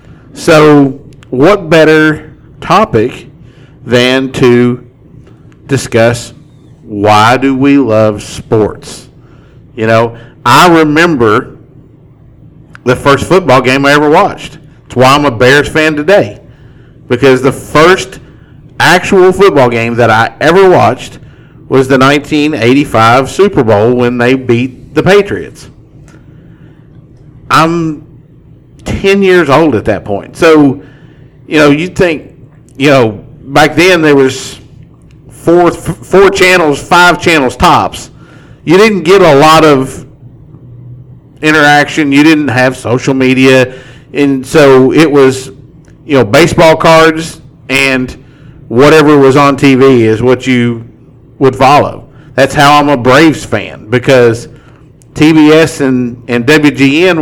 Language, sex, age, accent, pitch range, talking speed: English, male, 50-69, American, 125-150 Hz, 120 wpm